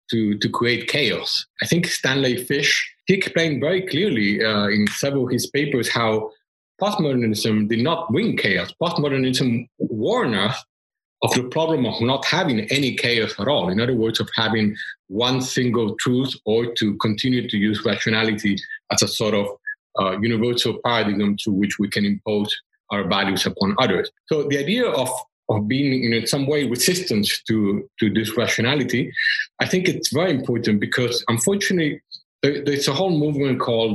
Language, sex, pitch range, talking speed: English, male, 110-140 Hz, 165 wpm